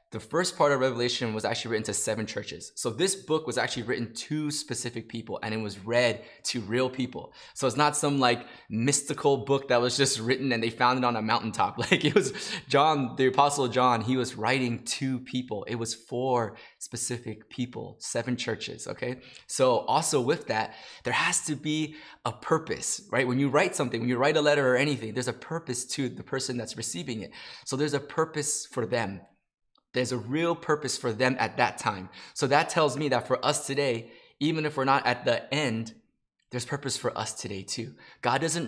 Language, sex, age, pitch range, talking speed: English, male, 20-39, 115-140 Hz, 210 wpm